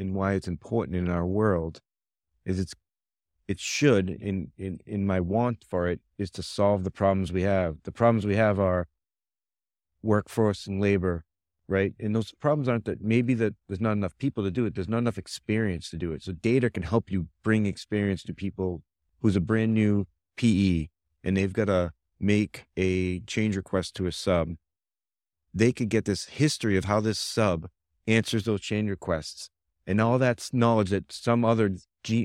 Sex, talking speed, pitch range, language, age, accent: male, 185 wpm, 90-110 Hz, English, 30-49, American